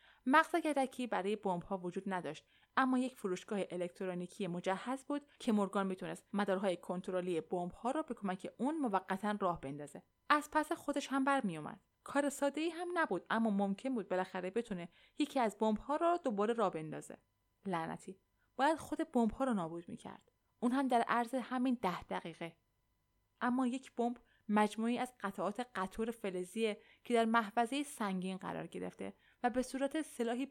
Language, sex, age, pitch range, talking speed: Persian, female, 20-39, 185-255 Hz, 155 wpm